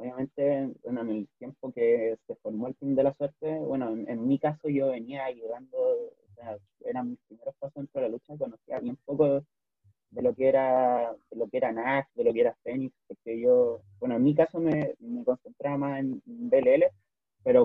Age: 20-39